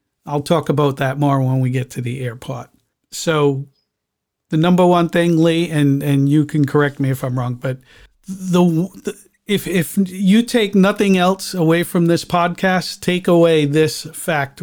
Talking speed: 175 wpm